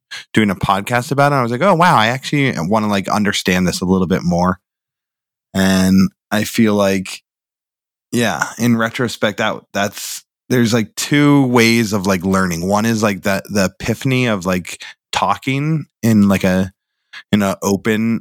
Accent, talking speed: American, 170 wpm